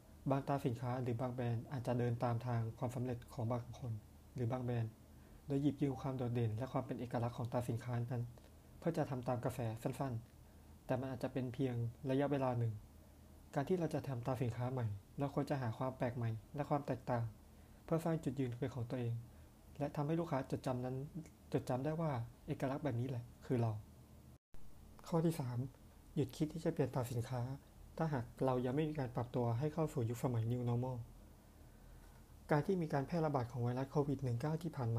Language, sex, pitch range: Thai, male, 120-145 Hz